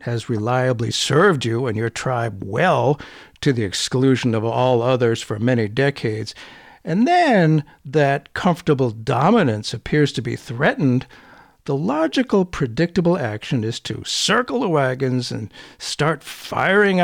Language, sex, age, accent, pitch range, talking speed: English, male, 60-79, American, 120-170 Hz, 135 wpm